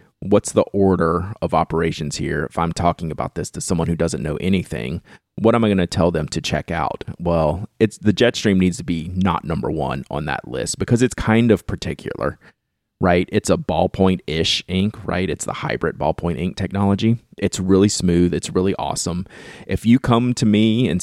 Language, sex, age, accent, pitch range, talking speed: English, male, 30-49, American, 85-105 Hz, 205 wpm